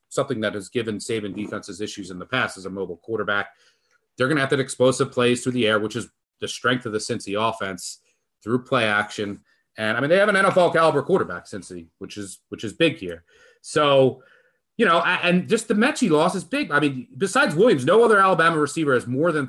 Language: English